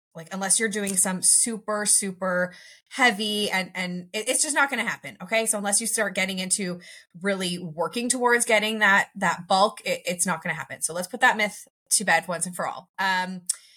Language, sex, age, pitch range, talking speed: English, female, 20-39, 165-210 Hz, 210 wpm